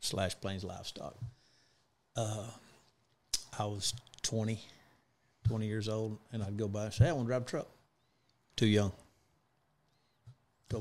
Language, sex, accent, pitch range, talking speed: English, male, American, 100-120 Hz, 145 wpm